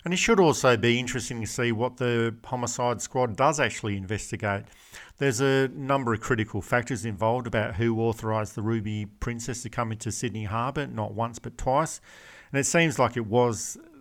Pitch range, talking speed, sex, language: 110-130 Hz, 185 wpm, male, English